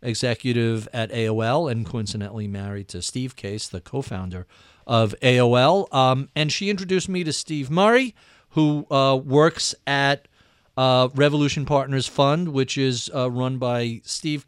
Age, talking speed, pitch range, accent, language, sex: 40-59, 145 wpm, 115-155 Hz, American, English, male